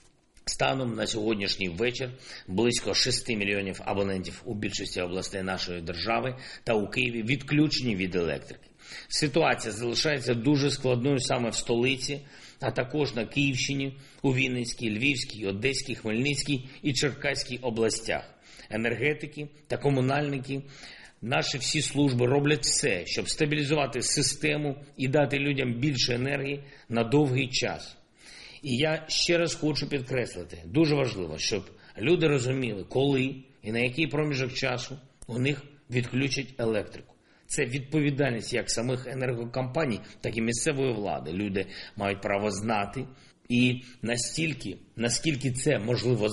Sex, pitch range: male, 115-145 Hz